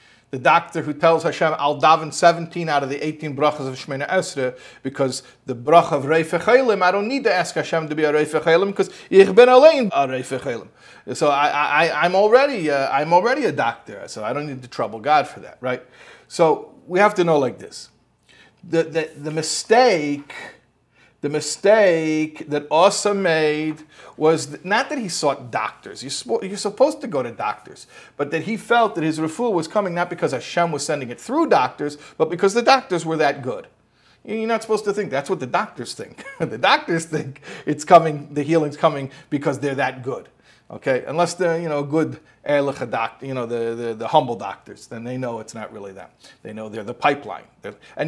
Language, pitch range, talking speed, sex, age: English, 145-190 Hz, 195 wpm, male, 40-59